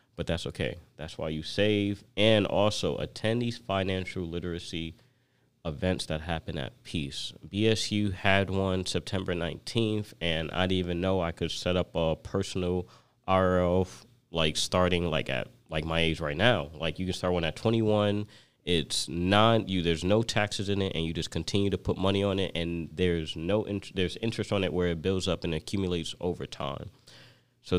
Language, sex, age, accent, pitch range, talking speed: English, male, 30-49, American, 85-110 Hz, 185 wpm